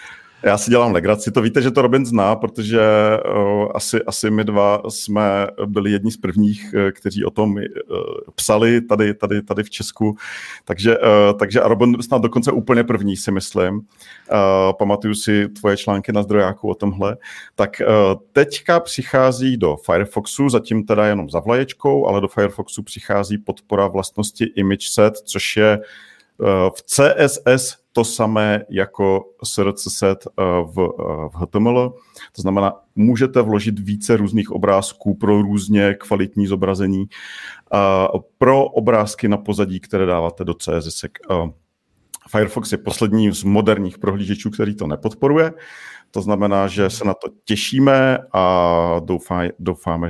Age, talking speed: 40-59, 135 wpm